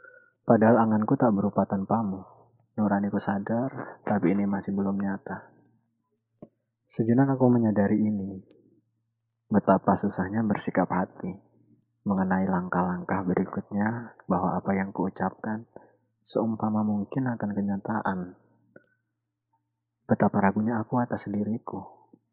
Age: 20-39